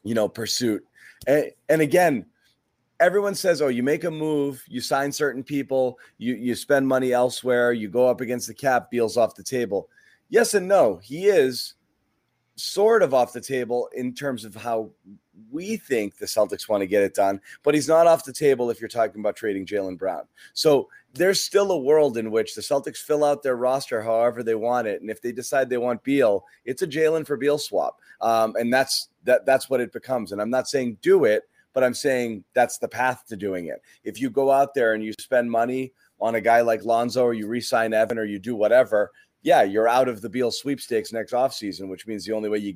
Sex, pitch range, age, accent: male, 110-140 Hz, 30-49, American